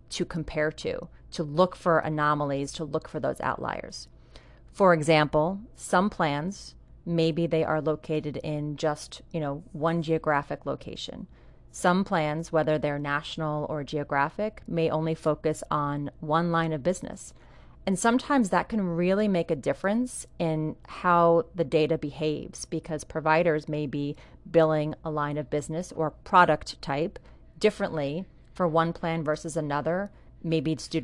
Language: English